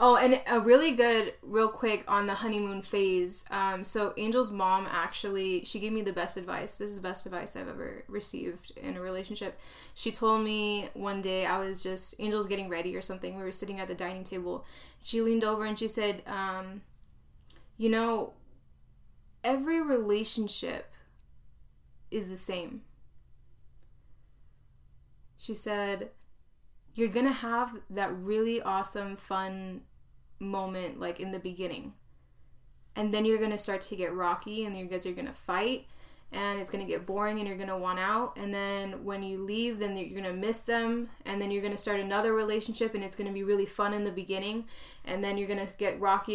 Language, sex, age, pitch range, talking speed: English, female, 20-39, 190-220 Hz, 180 wpm